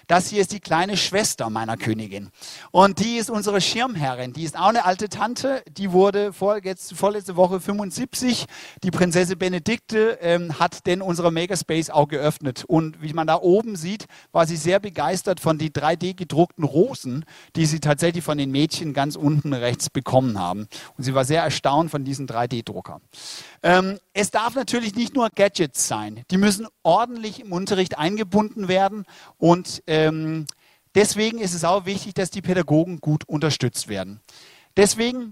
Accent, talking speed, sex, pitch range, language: German, 165 wpm, male, 150-200 Hz, English